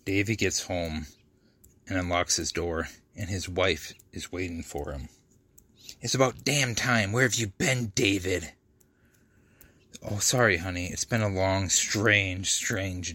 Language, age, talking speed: English, 30-49, 145 wpm